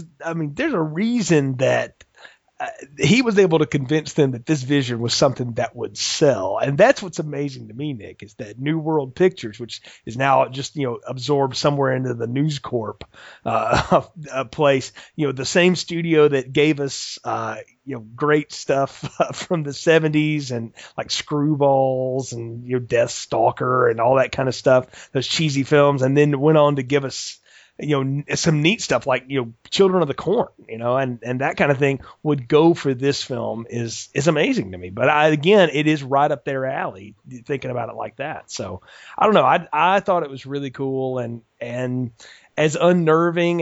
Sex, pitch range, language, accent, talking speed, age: male, 130-155 Hz, English, American, 200 wpm, 30-49